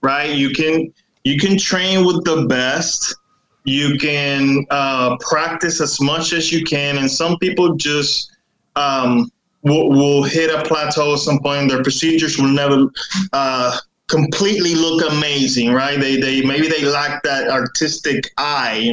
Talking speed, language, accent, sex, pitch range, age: 160 wpm, English, American, male, 135-165 Hz, 20-39